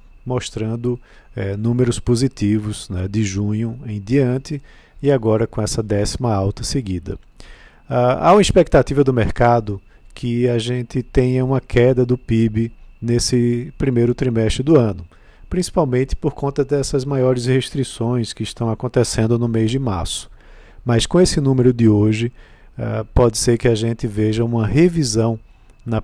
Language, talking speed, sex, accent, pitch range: Portuguese, 145 wpm, male, Brazilian, 105-130 Hz